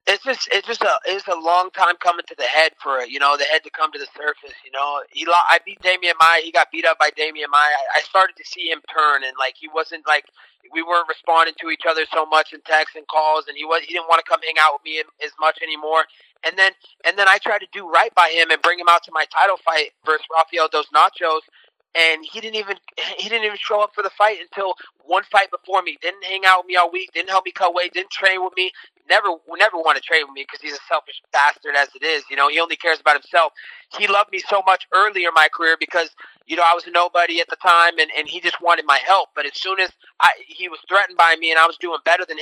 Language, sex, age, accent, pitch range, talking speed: English, male, 20-39, American, 160-190 Hz, 275 wpm